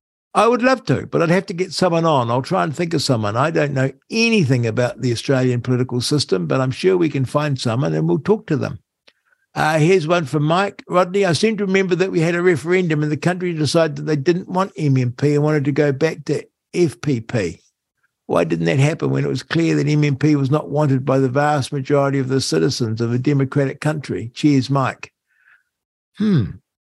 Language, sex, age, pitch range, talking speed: English, male, 60-79, 130-185 Hz, 215 wpm